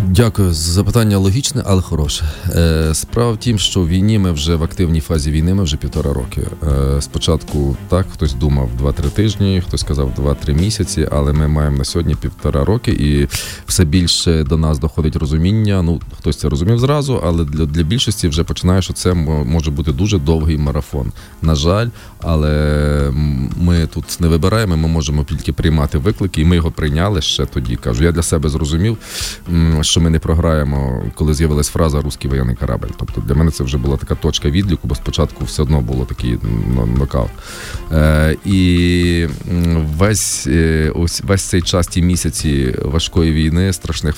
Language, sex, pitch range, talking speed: Ukrainian, male, 75-90 Hz, 165 wpm